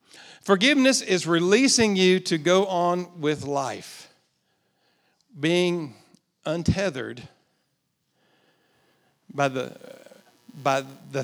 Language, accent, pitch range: English, American, 145-195 Hz